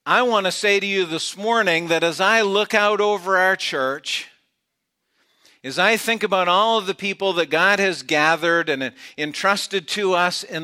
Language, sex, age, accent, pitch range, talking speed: English, male, 50-69, American, 165-195 Hz, 185 wpm